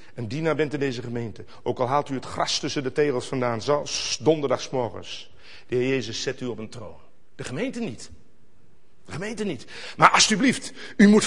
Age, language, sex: 50-69, Dutch, male